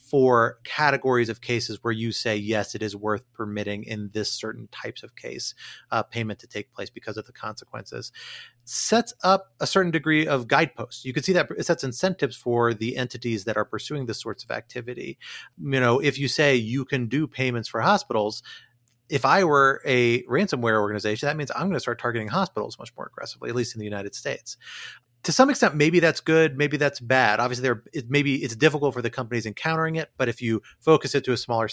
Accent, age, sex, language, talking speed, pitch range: American, 30-49, male, English, 210 wpm, 110-135 Hz